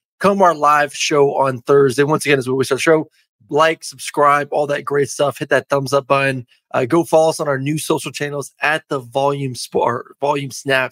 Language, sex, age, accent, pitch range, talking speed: English, male, 20-39, American, 135-160 Hz, 210 wpm